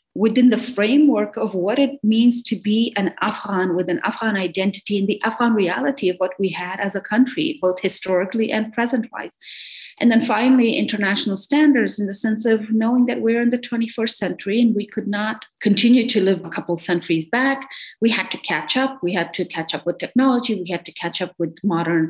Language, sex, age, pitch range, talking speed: English, female, 40-59, 180-235 Hz, 205 wpm